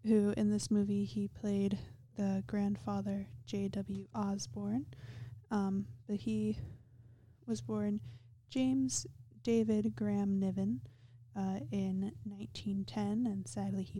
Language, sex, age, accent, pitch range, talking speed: English, female, 20-39, American, 115-190 Hz, 110 wpm